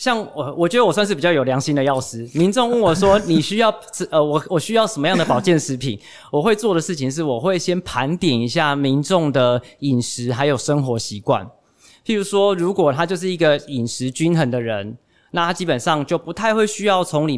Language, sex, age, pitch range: Chinese, male, 20-39, 135-185 Hz